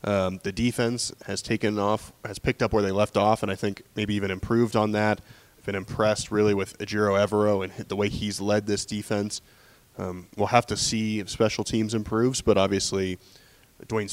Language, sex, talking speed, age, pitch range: English, male, 200 wpm, 20-39, 100-115 Hz